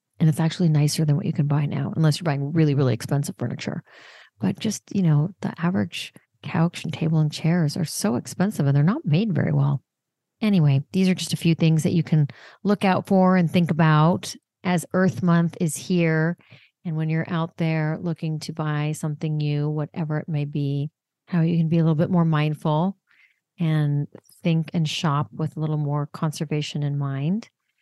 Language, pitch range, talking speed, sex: English, 150-175 Hz, 200 wpm, female